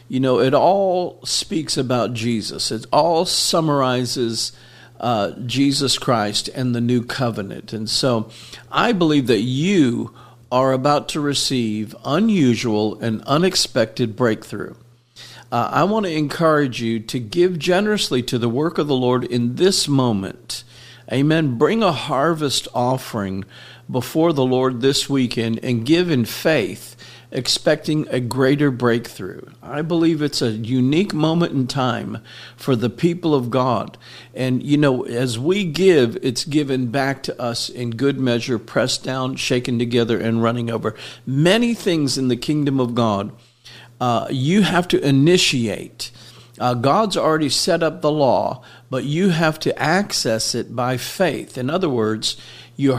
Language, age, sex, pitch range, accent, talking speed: English, 50-69, male, 120-150 Hz, American, 150 wpm